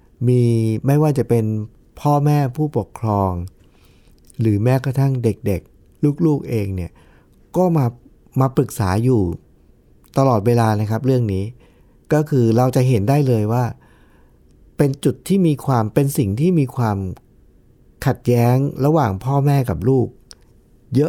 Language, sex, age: Thai, male, 60-79